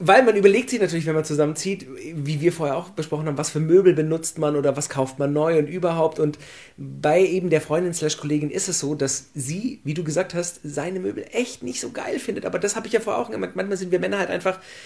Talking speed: 255 wpm